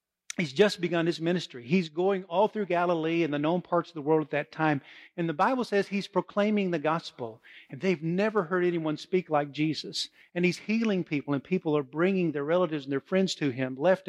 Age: 50-69